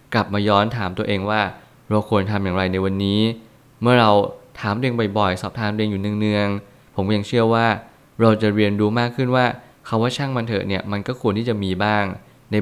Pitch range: 100-120 Hz